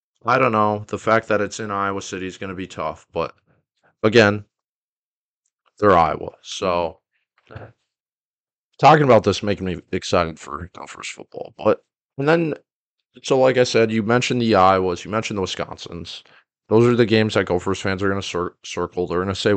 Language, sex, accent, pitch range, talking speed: English, male, American, 95-115 Hz, 185 wpm